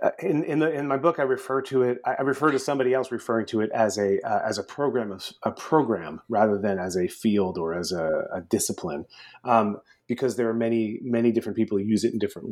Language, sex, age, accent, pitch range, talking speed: English, male, 30-49, American, 100-130 Hz, 240 wpm